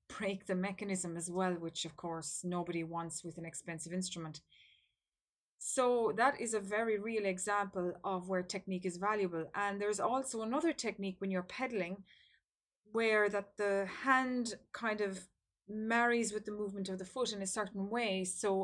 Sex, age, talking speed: female, 30-49, 165 wpm